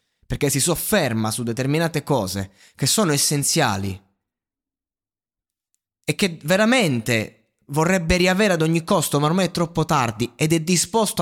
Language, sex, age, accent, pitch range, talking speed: Italian, male, 20-39, native, 115-165 Hz, 135 wpm